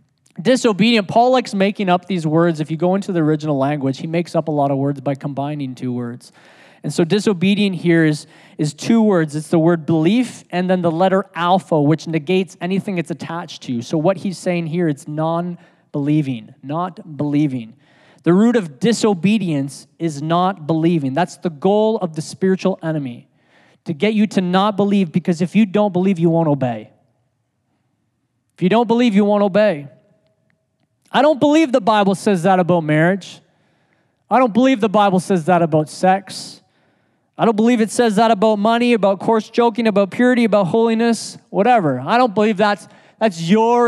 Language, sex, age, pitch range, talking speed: English, male, 20-39, 155-215 Hz, 180 wpm